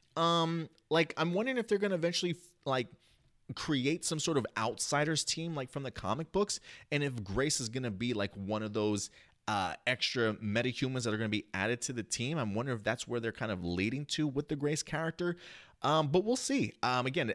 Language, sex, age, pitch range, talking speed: English, male, 30-49, 110-165 Hz, 220 wpm